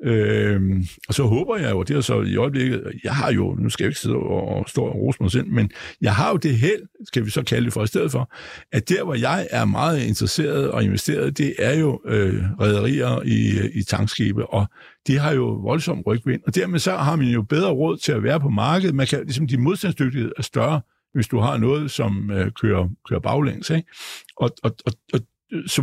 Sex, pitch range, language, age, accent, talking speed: male, 105-145 Hz, Danish, 60-79, native, 230 wpm